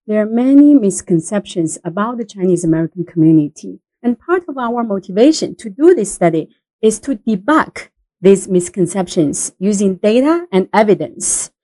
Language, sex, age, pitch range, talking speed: English, female, 40-59, 195-285 Hz, 140 wpm